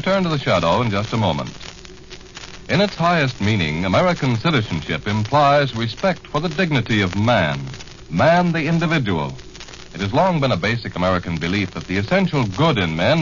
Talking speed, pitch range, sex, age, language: 170 wpm, 95-155 Hz, male, 60-79, English